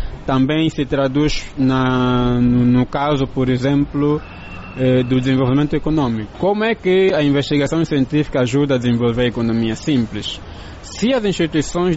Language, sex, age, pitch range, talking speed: Portuguese, male, 20-39, 125-155 Hz, 140 wpm